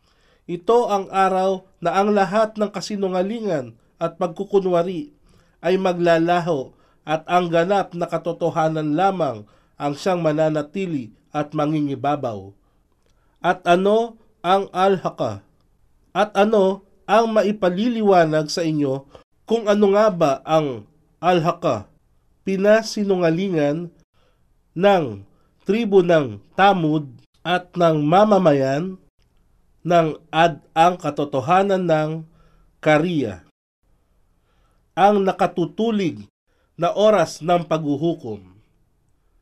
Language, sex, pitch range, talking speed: Filipino, male, 145-190 Hz, 90 wpm